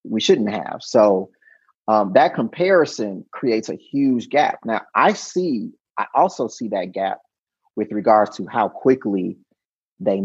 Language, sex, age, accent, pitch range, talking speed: English, male, 30-49, American, 105-160 Hz, 145 wpm